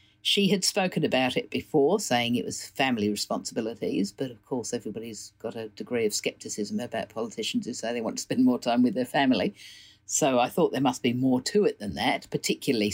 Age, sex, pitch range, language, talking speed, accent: 50-69, female, 115-185 Hz, English, 210 wpm, British